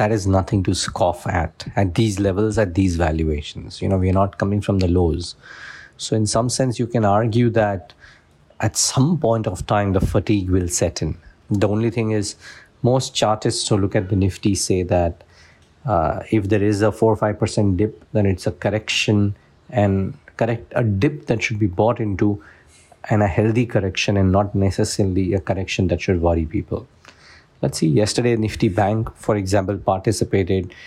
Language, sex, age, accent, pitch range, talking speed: English, male, 50-69, Indian, 95-110 Hz, 185 wpm